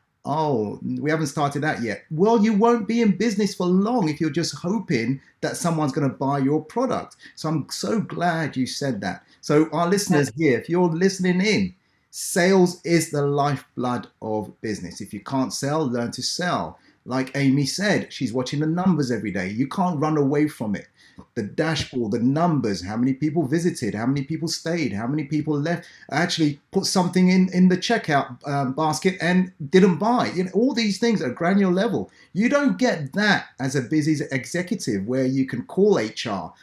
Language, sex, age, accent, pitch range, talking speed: English, male, 30-49, British, 135-185 Hz, 190 wpm